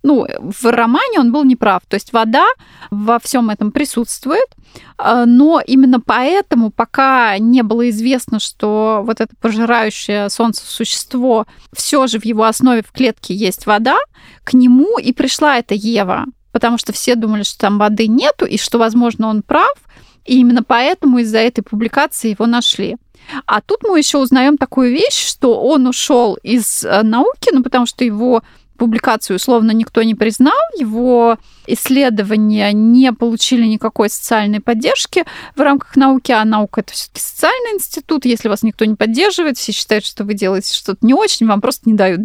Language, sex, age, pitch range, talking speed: Russian, female, 20-39, 220-270 Hz, 165 wpm